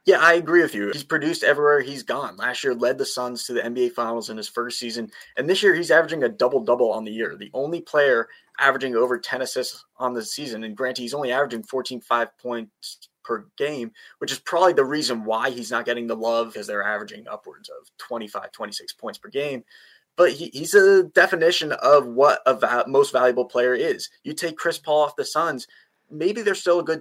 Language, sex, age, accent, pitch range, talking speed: English, male, 20-39, American, 120-180 Hz, 215 wpm